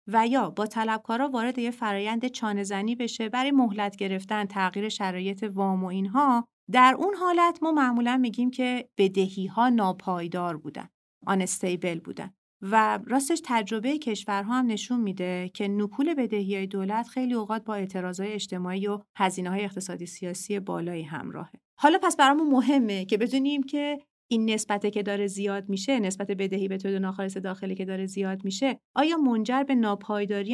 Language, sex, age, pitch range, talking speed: Persian, female, 40-59, 195-250 Hz, 155 wpm